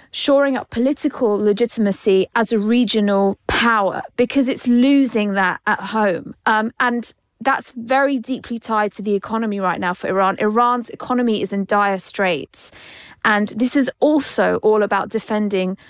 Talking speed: 150 wpm